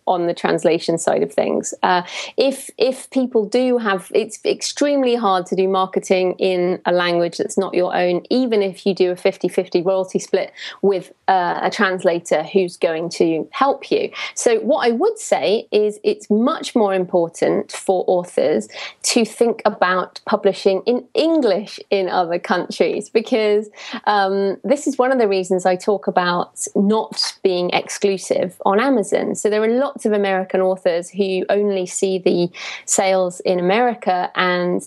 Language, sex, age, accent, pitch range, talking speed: English, female, 30-49, British, 180-220 Hz, 165 wpm